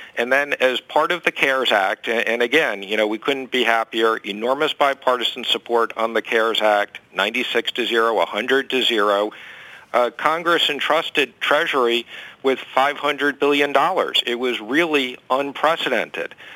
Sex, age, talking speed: male, 50-69, 145 wpm